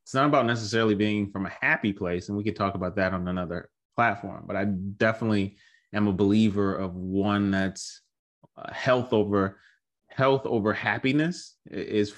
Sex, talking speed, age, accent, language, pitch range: male, 170 wpm, 30-49, American, English, 95-110 Hz